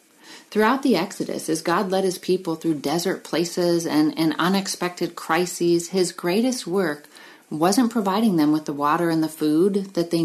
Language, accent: English, American